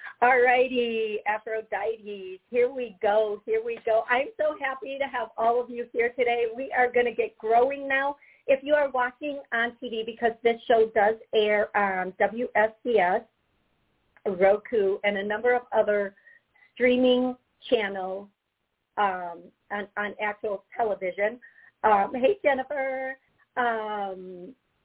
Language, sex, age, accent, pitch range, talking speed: English, female, 50-69, American, 210-255 Hz, 135 wpm